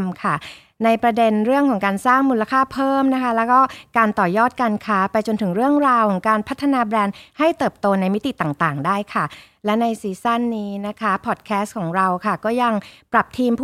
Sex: female